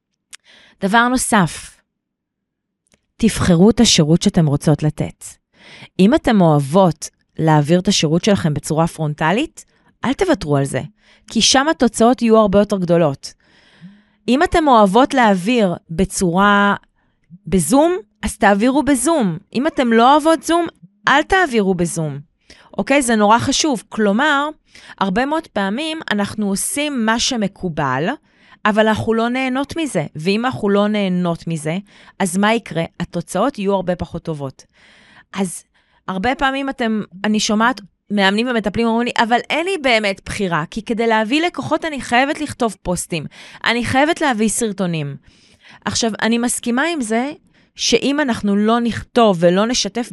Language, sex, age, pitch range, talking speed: Hebrew, female, 30-49, 185-250 Hz, 135 wpm